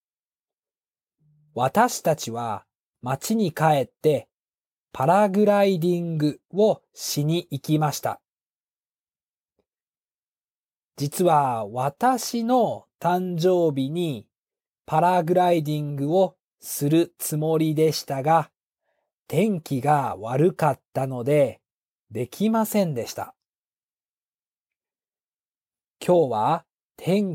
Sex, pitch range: male, 145-195 Hz